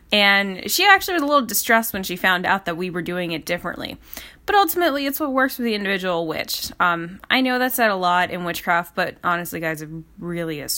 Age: 10-29